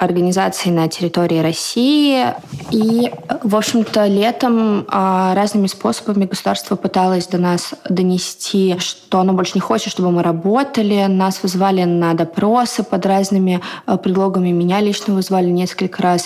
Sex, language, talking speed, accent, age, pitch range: female, Russian, 130 wpm, native, 20-39, 175-200 Hz